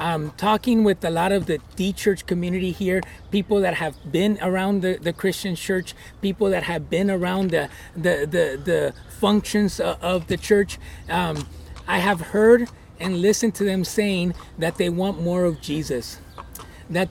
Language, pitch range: English, 175-215 Hz